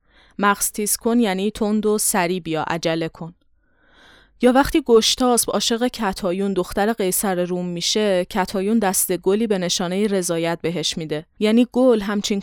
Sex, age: female, 30-49